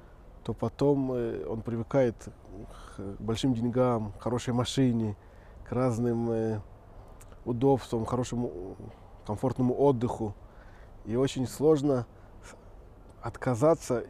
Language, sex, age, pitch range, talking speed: Russian, male, 20-39, 105-140 Hz, 85 wpm